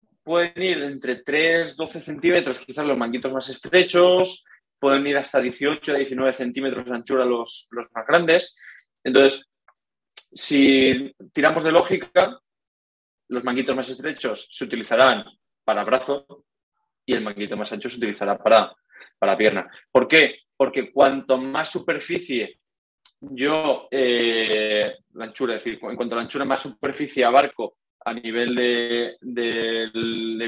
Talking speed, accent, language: 135 wpm, Spanish, Spanish